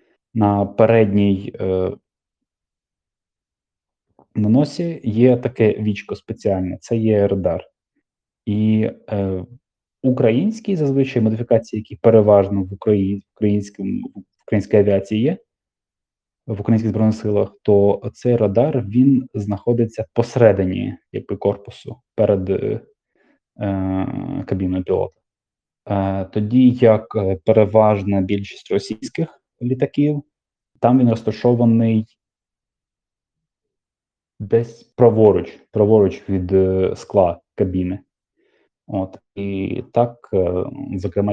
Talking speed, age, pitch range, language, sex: 90 wpm, 20-39, 95-115 Hz, Ukrainian, male